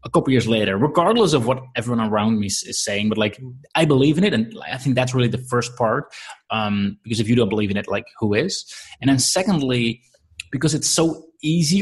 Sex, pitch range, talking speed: male, 110-130 Hz, 225 wpm